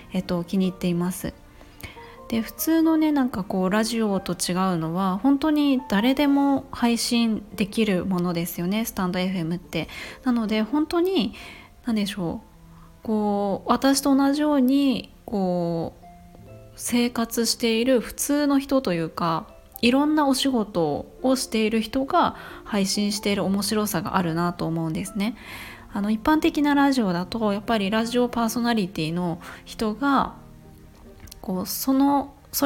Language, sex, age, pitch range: Japanese, female, 20-39, 185-250 Hz